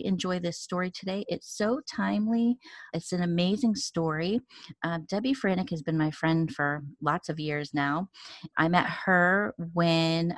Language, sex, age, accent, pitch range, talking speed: English, female, 30-49, American, 160-205 Hz, 155 wpm